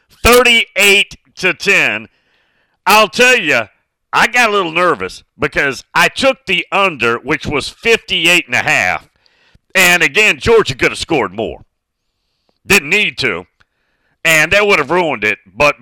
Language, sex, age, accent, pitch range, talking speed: English, male, 50-69, American, 140-205 Hz, 150 wpm